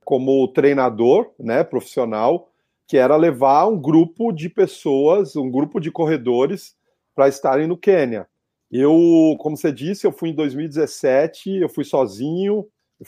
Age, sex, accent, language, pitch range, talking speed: 40-59, male, Brazilian, Portuguese, 145-195 Hz, 140 wpm